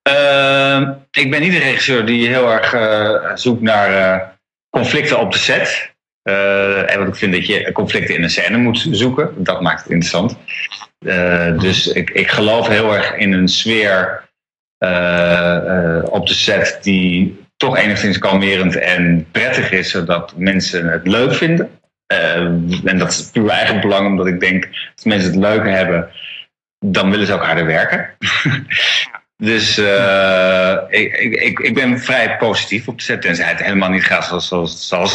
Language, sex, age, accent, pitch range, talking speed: Dutch, male, 30-49, Dutch, 90-115 Hz, 170 wpm